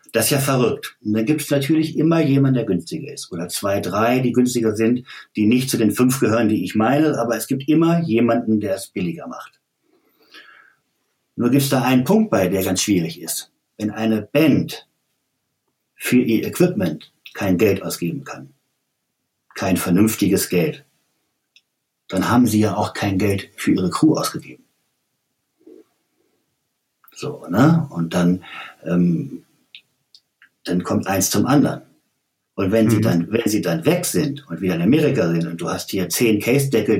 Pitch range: 105-135 Hz